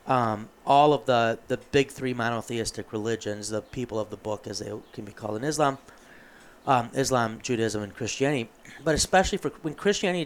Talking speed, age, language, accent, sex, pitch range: 180 wpm, 30-49, English, American, male, 110-135 Hz